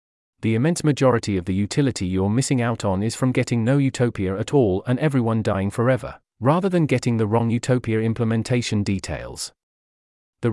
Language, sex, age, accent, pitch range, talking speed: English, male, 40-59, British, 105-135 Hz, 170 wpm